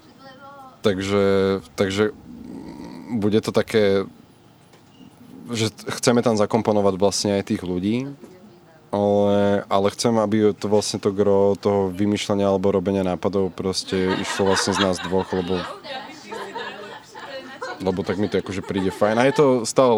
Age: 20-39